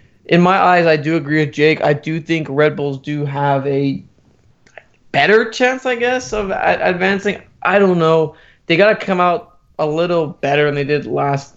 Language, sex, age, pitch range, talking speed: English, male, 20-39, 145-165 Hz, 185 wpm